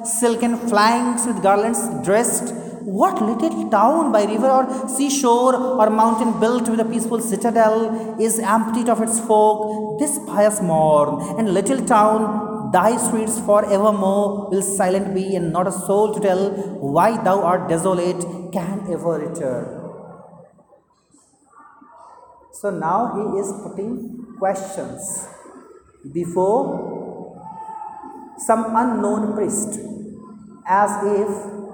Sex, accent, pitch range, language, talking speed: male, native, 195-250 Hz, Hindi, 115 wpm